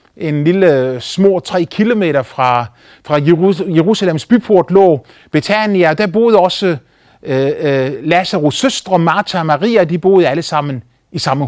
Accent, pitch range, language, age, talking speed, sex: native, 150-195 Hz, Danish, 30-49, 140 wpm, male